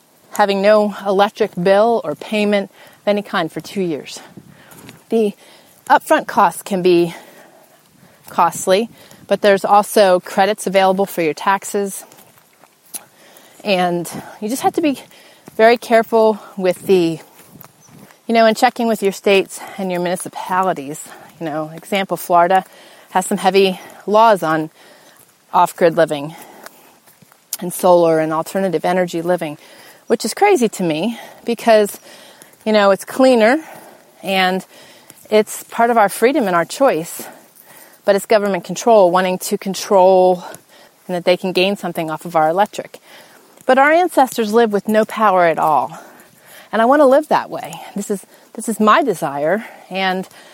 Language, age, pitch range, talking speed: English, 30-49, 180-235 Hz, 145 wpm